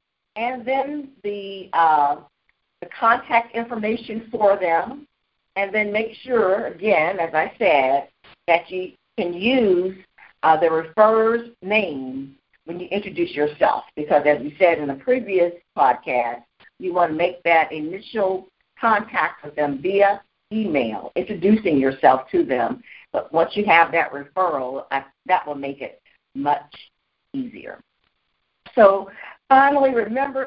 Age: 50-69